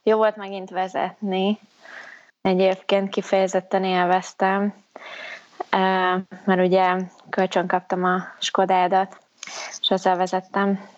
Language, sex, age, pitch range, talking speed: Hungarian, female, 20-39, 180-195 Hz, 90 wpm